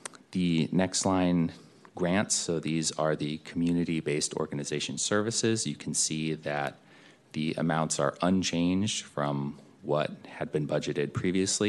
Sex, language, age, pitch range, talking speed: male, English, 30-49, 75-90 Hz, 130 wpm